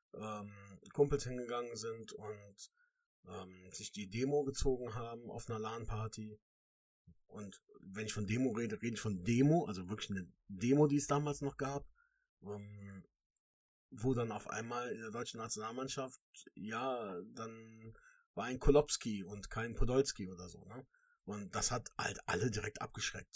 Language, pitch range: German, 105-135 Hz